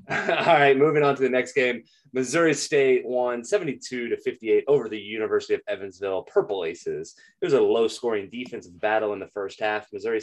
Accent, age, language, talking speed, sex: American, 30-49, English, 190 wpm, male